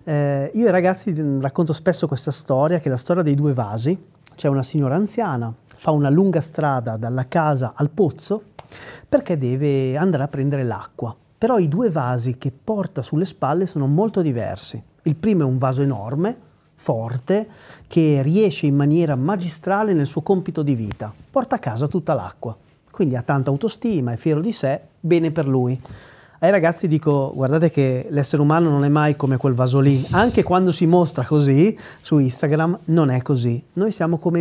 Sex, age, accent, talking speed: male, 40-59, native, 180 wpm